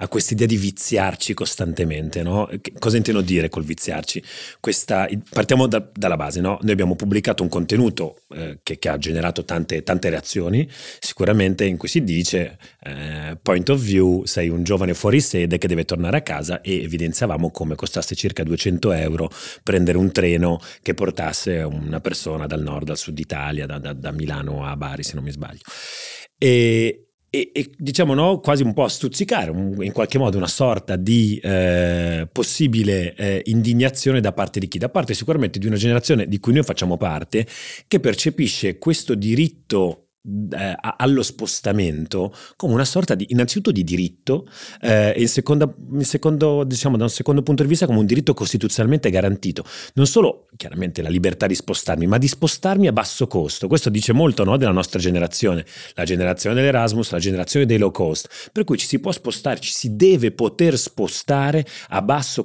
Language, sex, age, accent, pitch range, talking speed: Italian, male, 30-49, native, 85-120 Hz, 170 wpm